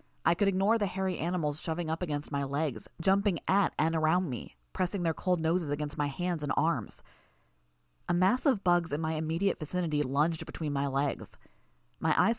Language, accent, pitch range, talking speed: English, American, 110-180 Hz, 190 wpm